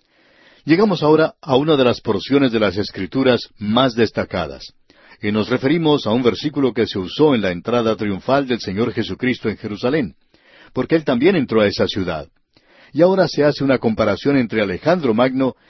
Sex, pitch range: male, 110-145 Hz